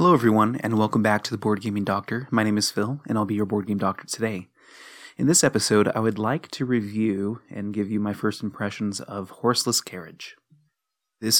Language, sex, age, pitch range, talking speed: English, male, 30-49, 100-115 Hz, 210 wpm